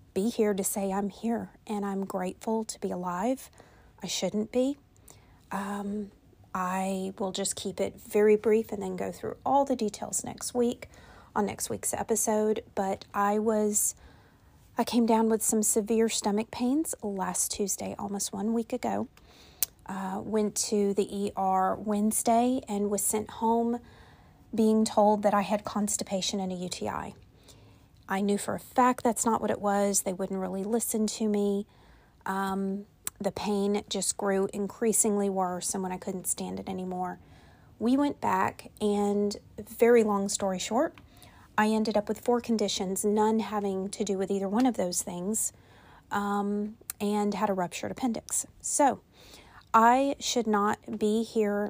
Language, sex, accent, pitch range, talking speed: English, female, American, 195-225 Hz, 160 wpm